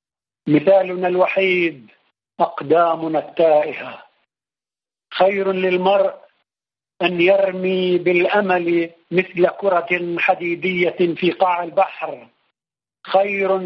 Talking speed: 70 wpm